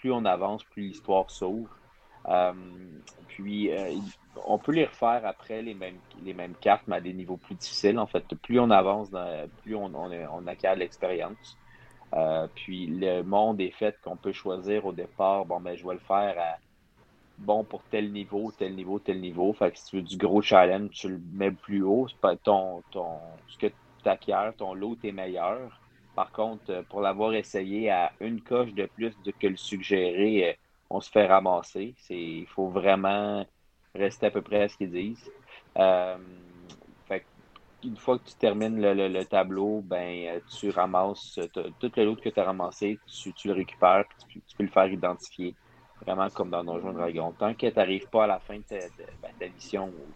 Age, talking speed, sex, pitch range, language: 40-59, 205 wpm, male, 90-105 Hz, French